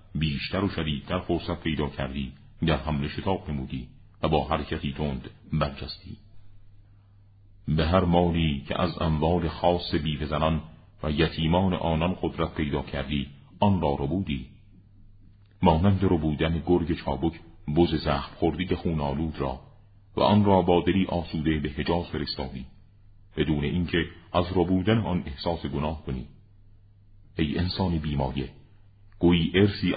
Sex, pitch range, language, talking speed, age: male, 75-100 Hz, Persian, 135 wpm, 40-59